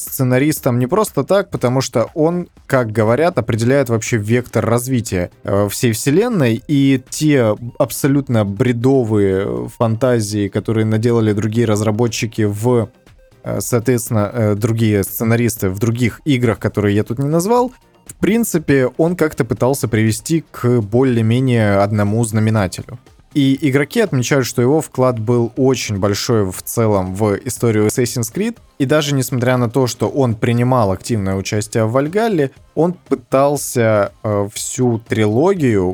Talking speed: 130 wpm